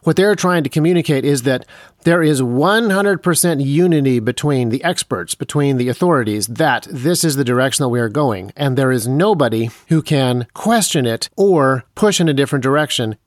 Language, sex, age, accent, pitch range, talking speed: English, male, 40-59, American, 130-170 Hz, 180 wpm